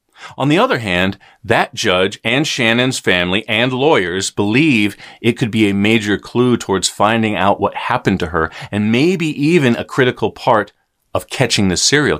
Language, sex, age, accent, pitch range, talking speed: English, male, 40-59, American, 100-135 Hz, 170 wpm